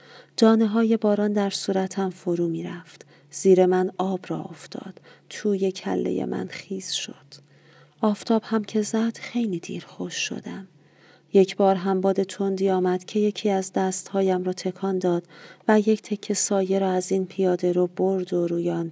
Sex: female